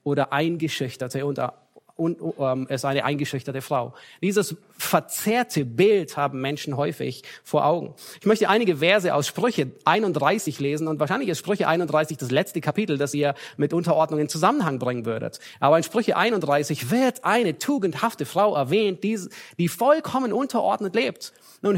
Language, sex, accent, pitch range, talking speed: German, male, German, 150-200 Hz, 155 wpm